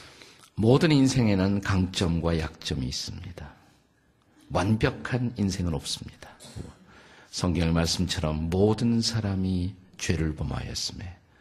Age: 50-69